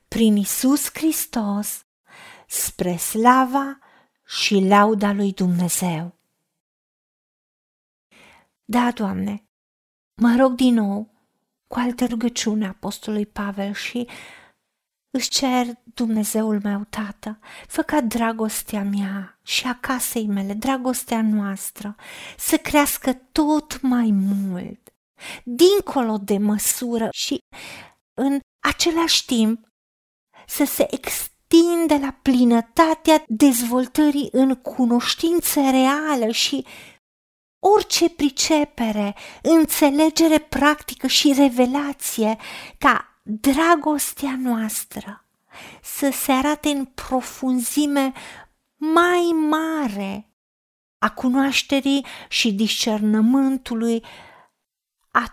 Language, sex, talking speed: Romanian, female, 85 wpm